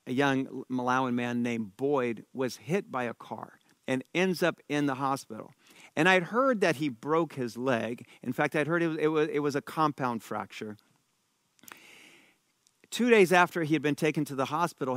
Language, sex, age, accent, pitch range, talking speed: English, male, 50-69, American, 125-160 Hz, 185 wpm